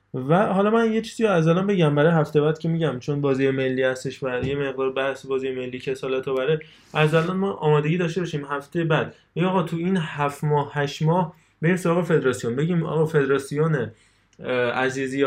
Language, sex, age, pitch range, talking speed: Persian, male, 20-39, 125-155 Hz, 185 wpm